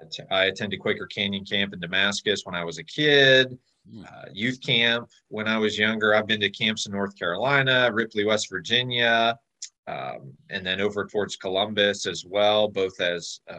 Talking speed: 170 wpm